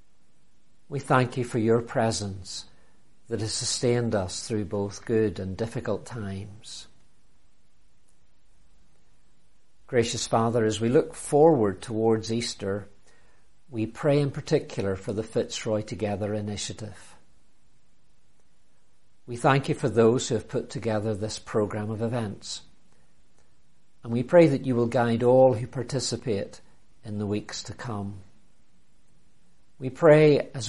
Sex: male